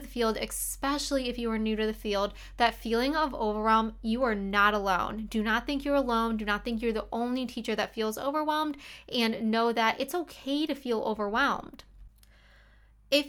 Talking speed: 190 wpm